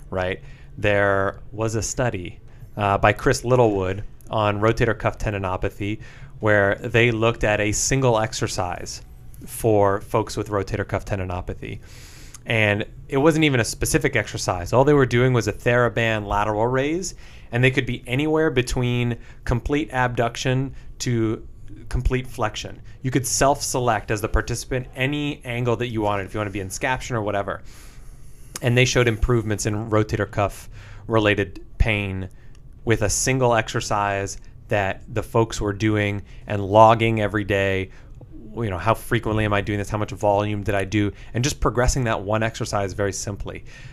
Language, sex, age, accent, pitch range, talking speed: English, male, 30-49, American, 105-125 Hz, 160 wpm